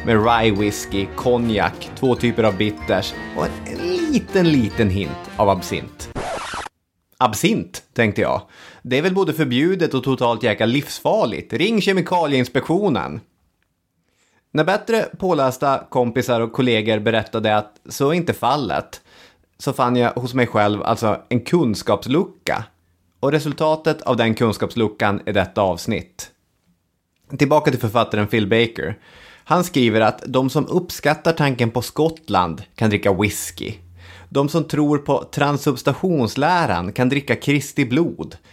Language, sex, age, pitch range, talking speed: English, male, 30-49, 105-145 Hz, 130 wpm